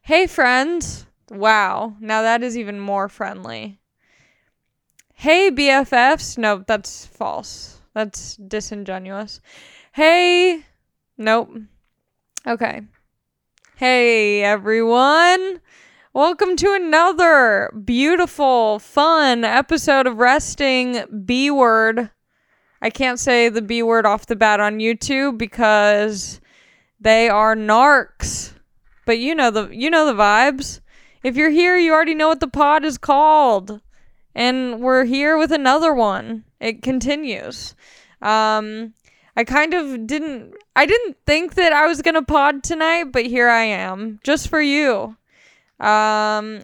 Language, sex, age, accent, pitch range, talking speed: English, female, 10-29, American, 220-300 Hz, 120 wpm